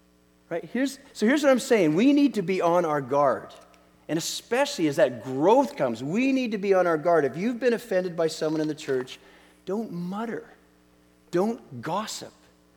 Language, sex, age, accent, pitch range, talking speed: English, male, 40-59, American, 130-205 Hz, 180 wpm